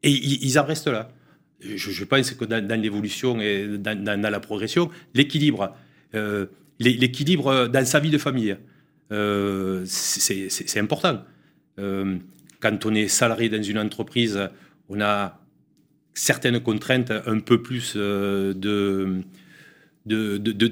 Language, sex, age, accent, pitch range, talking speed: French, male, 40-59, French, 110-145 Hz, 120 wpm